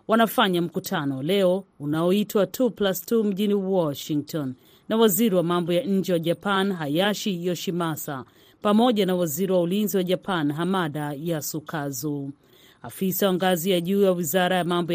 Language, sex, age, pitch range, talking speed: Swahili, female, 30-49, 160-205 Hz, 140 wpm